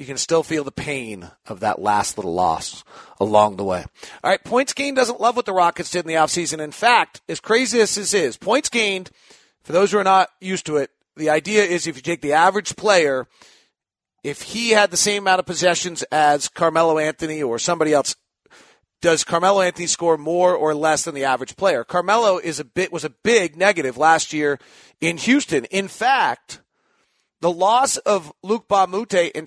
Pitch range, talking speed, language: 160-205 Hz, 200 wpm, English